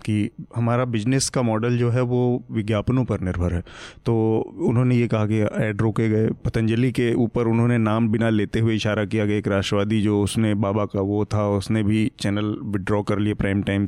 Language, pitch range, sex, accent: Hindi, 105-125 Hz, male, native